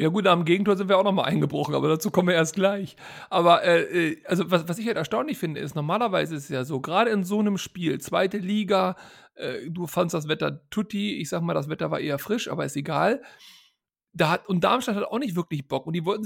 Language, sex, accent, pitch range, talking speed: German, male, German, 175-225 Hz, 235 wpm